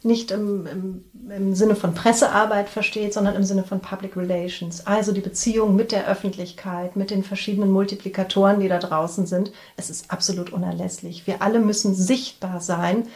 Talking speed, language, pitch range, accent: 165 wpm, German, 195-230 Hz, German